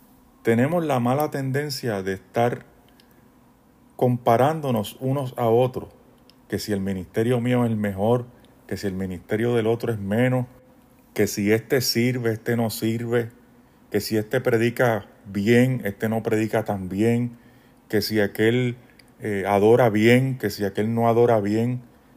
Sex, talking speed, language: male, 150 wpm, Spanish